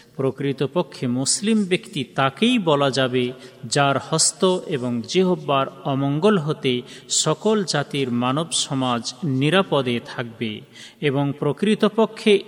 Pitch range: 130-175 Hz